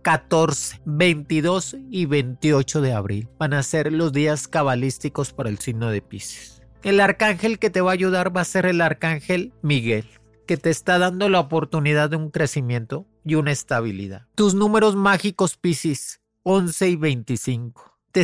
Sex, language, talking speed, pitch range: male, Spanish, 165 wpm, 140-185 Hz